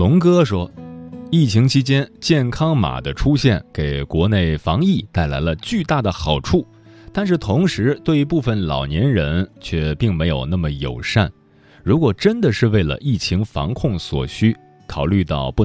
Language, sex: Chinese, male